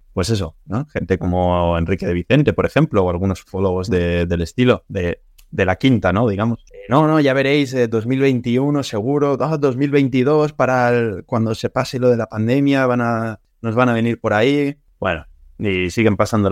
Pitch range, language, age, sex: 95-120 Hz, Spanish, 20-39, male